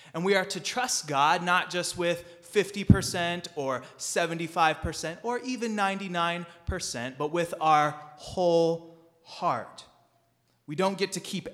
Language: English